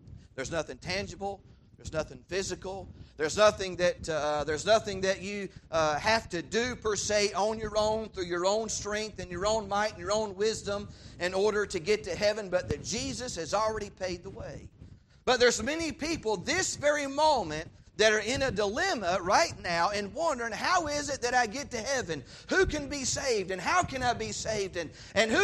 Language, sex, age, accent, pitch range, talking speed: English, male, 40-59, American, 155-260 Hz, 205 wpm